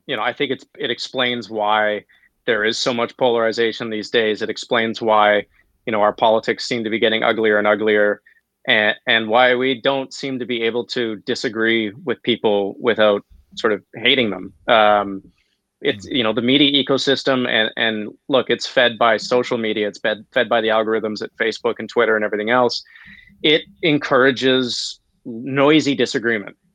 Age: 30-49